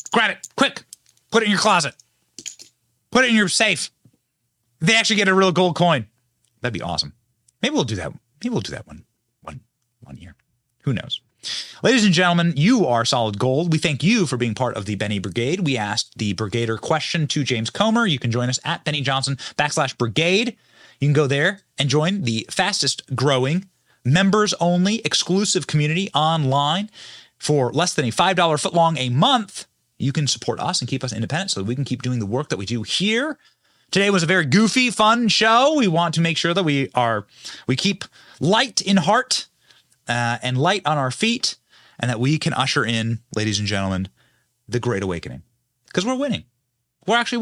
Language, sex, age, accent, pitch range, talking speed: English, male, 30-49, American, 120-185 Hz, 195 wpm